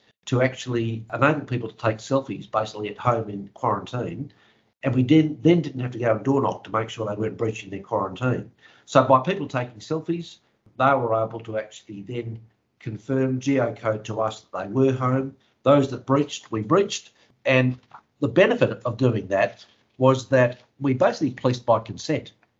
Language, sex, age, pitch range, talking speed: English, male, 60-79, 110-135 Hz, 180 wpm